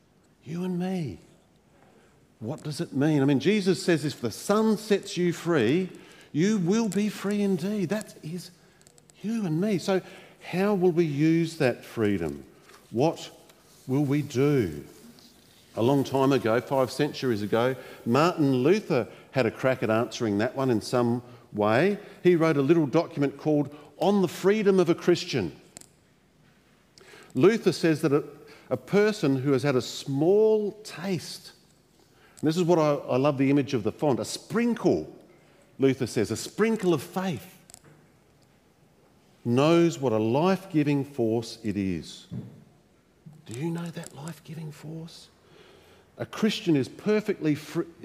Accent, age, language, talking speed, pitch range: Australian, 50-69, English, 150 wpm, 130-180 Hz